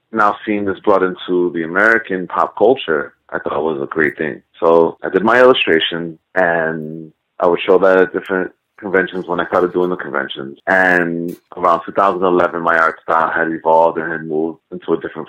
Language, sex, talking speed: English, male, 190 wpm